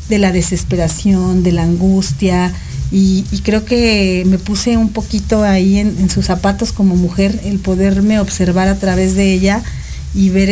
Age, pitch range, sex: 40-59, 180-195 Hz, female